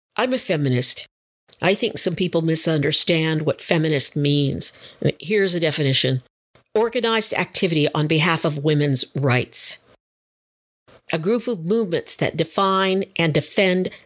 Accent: American